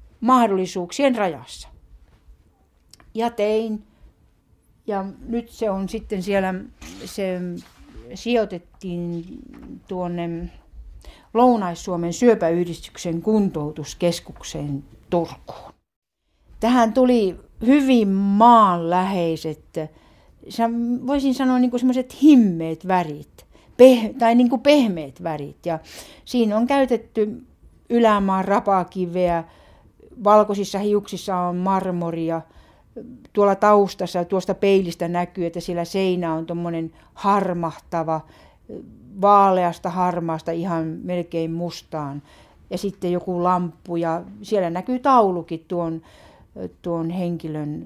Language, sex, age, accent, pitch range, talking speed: Finnish, female, 60-79, native, 165-210 Hz, 85 wpm